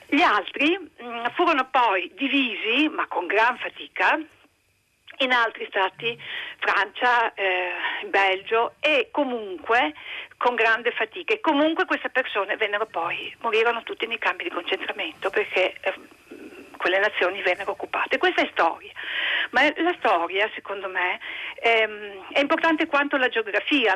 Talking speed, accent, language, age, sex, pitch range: 135 wpm, native, Italian, 50-69, female, 205-305 Hz